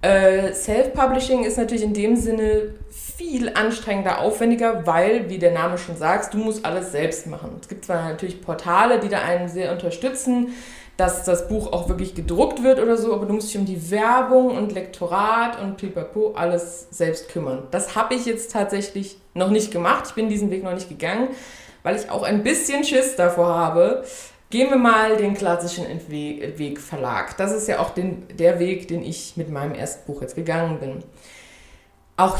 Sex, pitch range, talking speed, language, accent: female, 175-230 Hz, 185 wpm, German, German